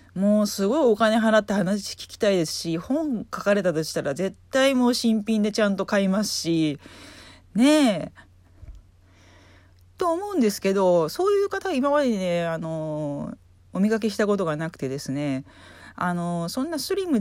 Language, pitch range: Japanese, 140-210 Hz